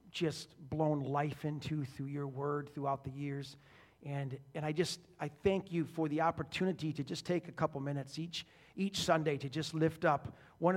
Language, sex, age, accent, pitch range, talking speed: English, male, 40-59, American, 145-170 Hz, 190 wpm